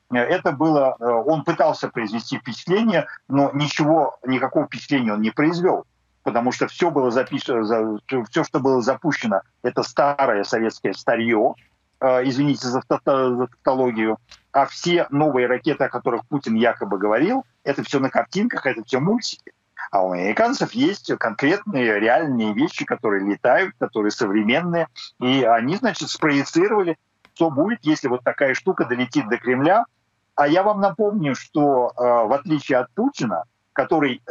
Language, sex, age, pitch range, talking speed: Ukrainian, male, 50-69, 115-160 Hz, 135 wpm